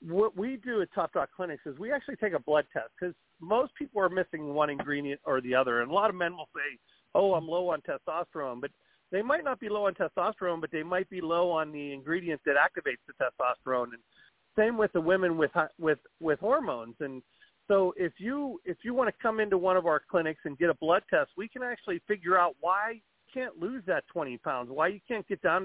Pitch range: 155-210 Hz